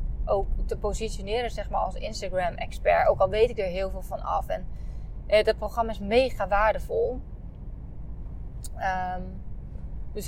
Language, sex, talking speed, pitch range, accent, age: Dutch, female, 145 wpm, 185-225 Hz, Dutch, 20-39